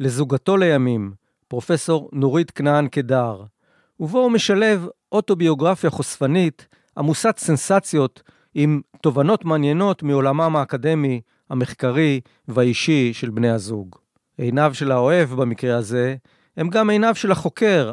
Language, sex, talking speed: Hebrew, male, 110 wpm